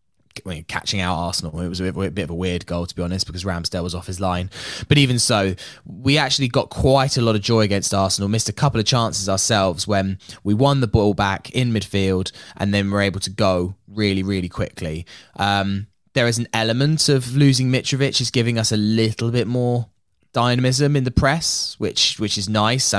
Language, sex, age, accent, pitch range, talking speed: English, male, 10-29, British, 100-130 Hz, 210 wpm